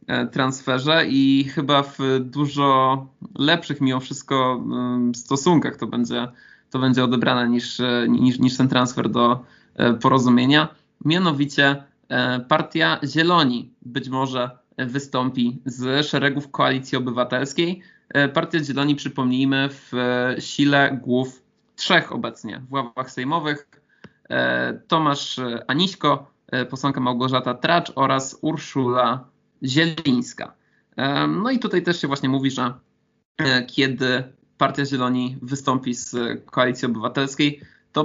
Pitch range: 125-145 Hz